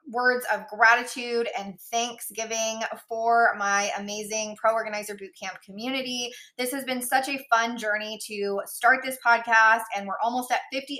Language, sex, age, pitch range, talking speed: English, female, 20-39, 205-240 Hz, 155 wpm